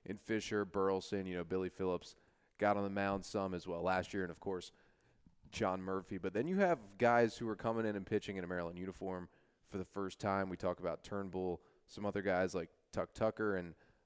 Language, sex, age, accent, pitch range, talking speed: English, male, 20-39, American, 95-115 Hz, 220 wpm